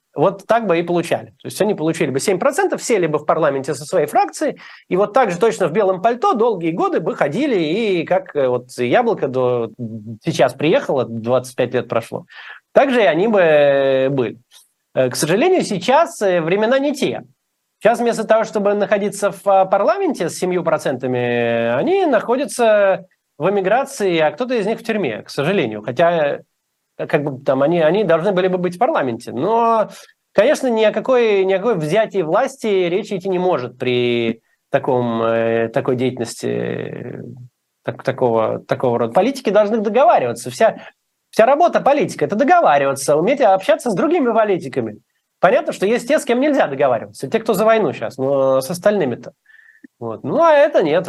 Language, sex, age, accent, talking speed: Russian, male, 30-49, native, 170 wpm